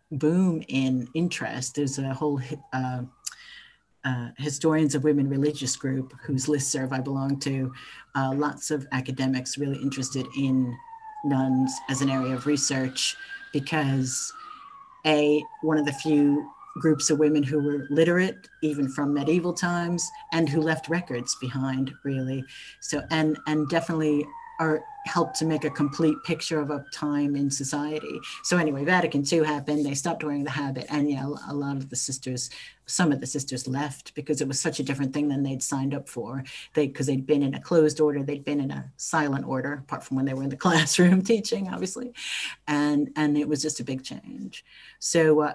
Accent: American